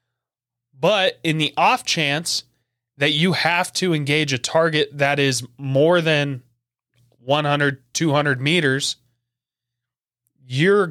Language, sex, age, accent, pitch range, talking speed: English, male, 20-39, American, 125-155 Hz, 110 wpm